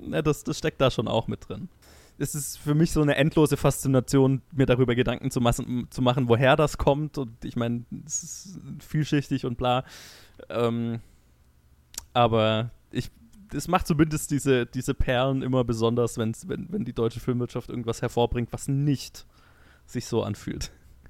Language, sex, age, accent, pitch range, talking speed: German, male, 20-39, German, 110-135 Hz, 170 wpm